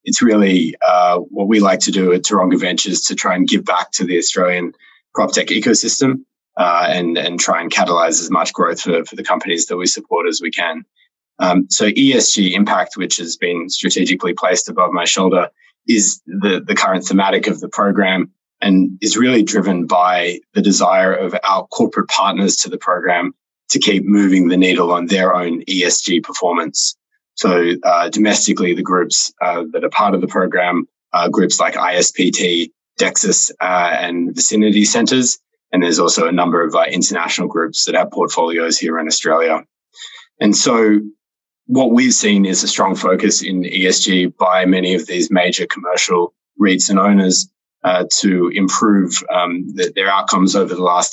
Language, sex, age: English, male, 20-39